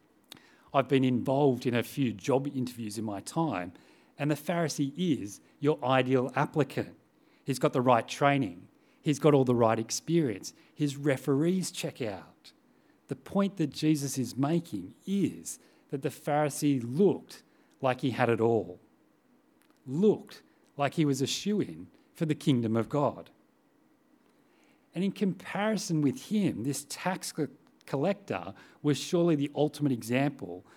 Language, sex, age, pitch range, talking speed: English, male, 40-59, 125-160 Hz, 145 wpm